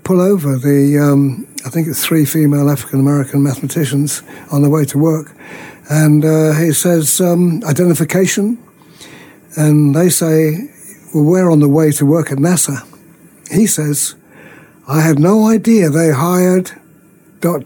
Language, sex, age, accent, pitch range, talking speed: English, male, 60-79, British, 145-170 Hz, 150 wpm